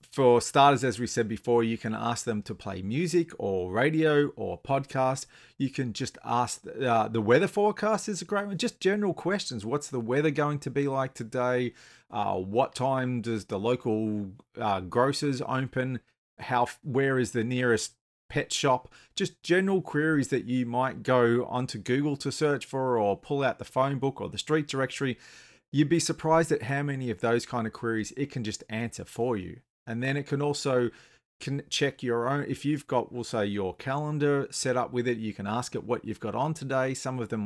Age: 30-49